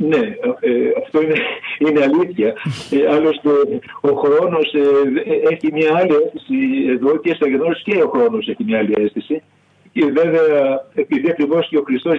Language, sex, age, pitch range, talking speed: Greek, male, 50-69, 140-230 Hz, 160 wpm